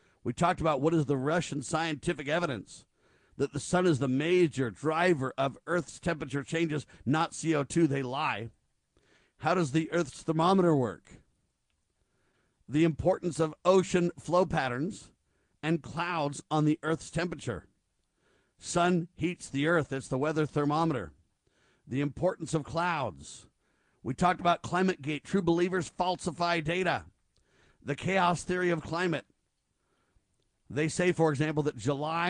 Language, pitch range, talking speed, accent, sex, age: English, 135-175 Hz, 135 wpm, American, male, 50-69